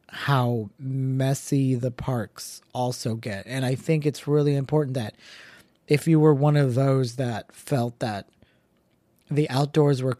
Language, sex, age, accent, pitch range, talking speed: English, male, 30-49, American, 120-140 Hz, 145 wpm